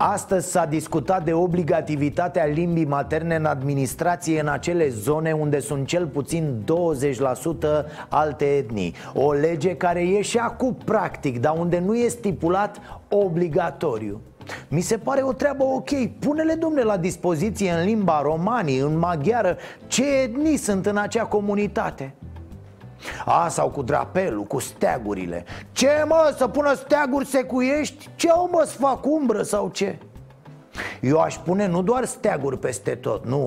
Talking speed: 145 wpm